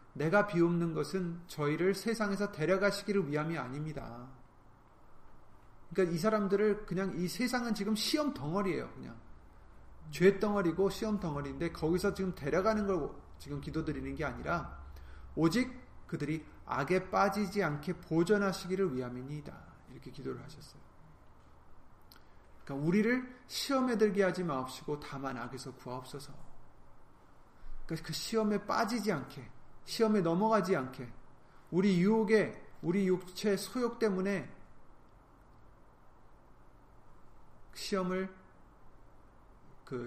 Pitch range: 140-200 Hz